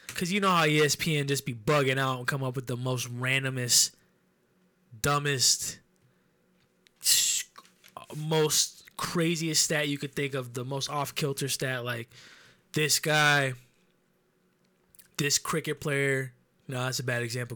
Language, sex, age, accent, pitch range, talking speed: English, male, 20-39, American, 130-155 Hz, 135 wpm